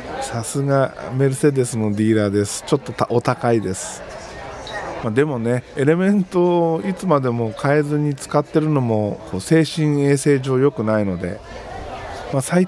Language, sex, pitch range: Japanese, male, 115-160 Hz